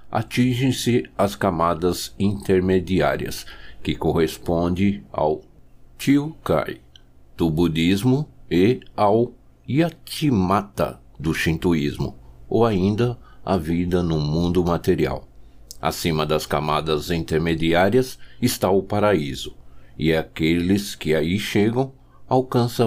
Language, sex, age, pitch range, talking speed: Portuguese, male, 60-79, 80-110 Hz, 90 wpm